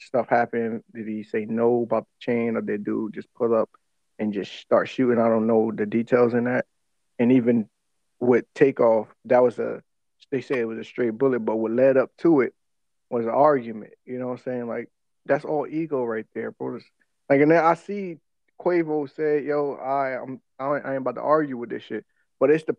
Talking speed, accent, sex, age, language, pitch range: 220 wpm, American, male, 20-39, English, 115-155 Hz